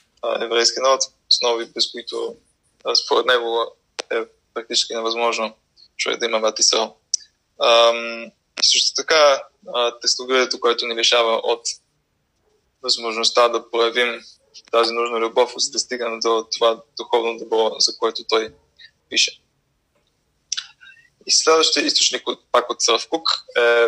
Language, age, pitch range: Bulgarian, 20-39, 115-135 Hz